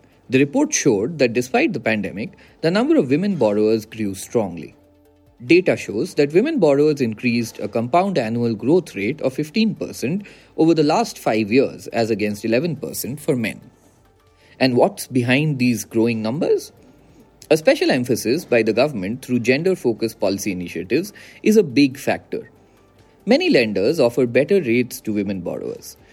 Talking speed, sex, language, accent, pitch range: 150 wpm, male, English, Indian, 105-155 Hz